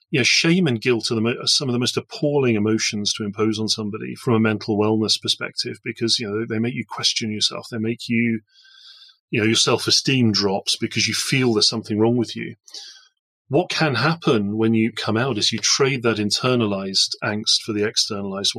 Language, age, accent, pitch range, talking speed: English, 30-49, British, 105-125 Hz, 205 wpm